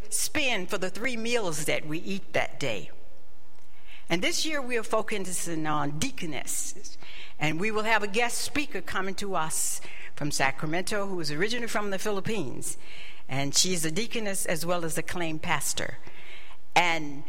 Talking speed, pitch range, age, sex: 165 wpm, 150-205 Hz, 60-79, female